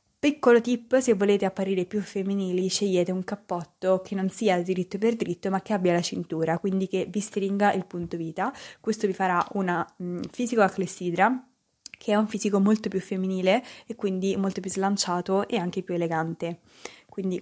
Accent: native